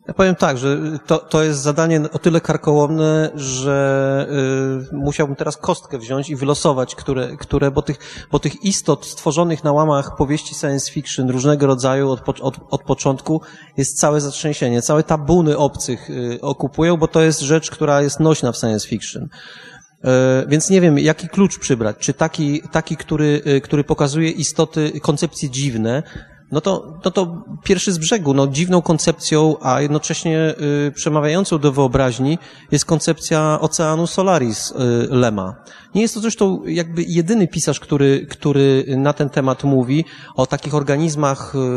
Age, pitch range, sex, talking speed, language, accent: 30-49, 135-160 Hz, male, 160 wpm, Polish, native